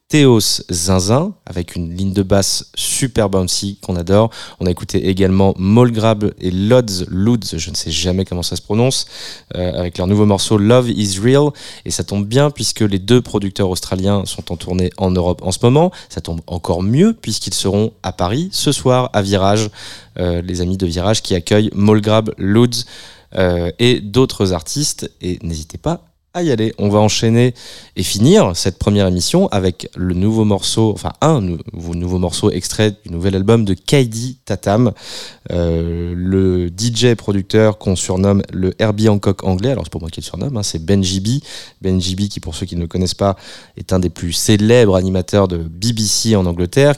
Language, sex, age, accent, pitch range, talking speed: French, male, 20-39, French, 90-110 Hz, 185 wpm